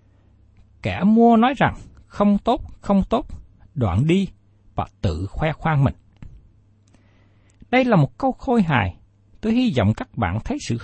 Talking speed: 155 wpm